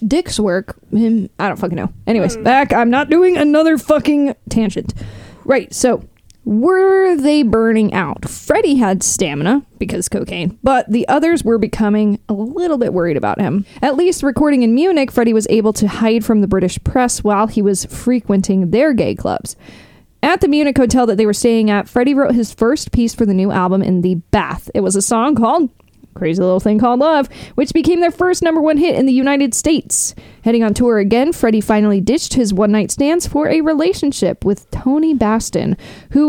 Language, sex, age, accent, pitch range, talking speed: English, female, 20-39, American, 205-285 Hz, 195 wpm